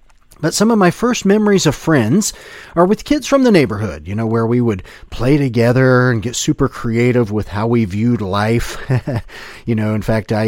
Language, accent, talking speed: English, American, 200 wpm